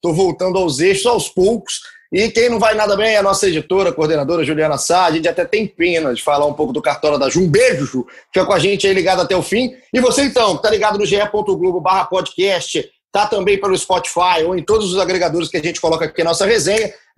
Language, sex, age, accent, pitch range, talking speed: Portuguese, male, 30-49, Brazilian, 175-225 Hz, 240 wpm